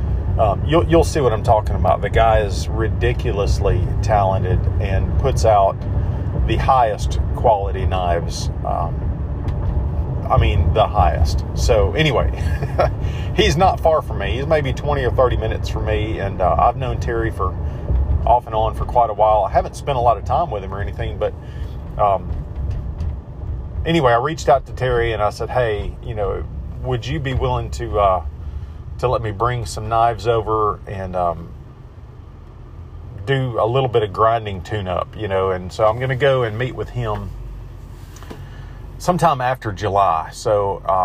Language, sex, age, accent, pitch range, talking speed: English, male, 40-59, American, 95-115 Hz, 170 wpm